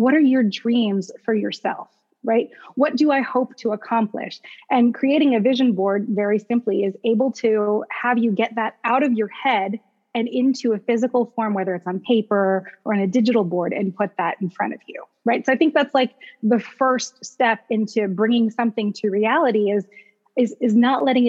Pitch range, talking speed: 210-255 Hz, 200 wpm